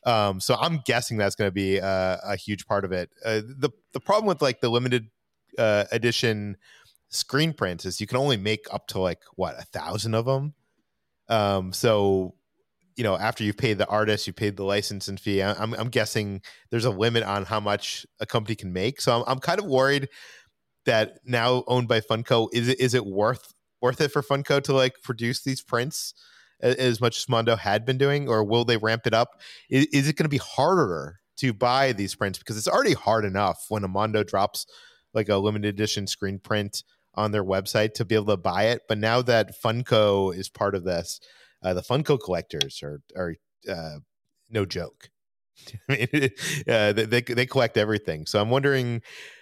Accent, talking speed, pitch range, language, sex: American, 200 wpm, 100-125 Hz, English, male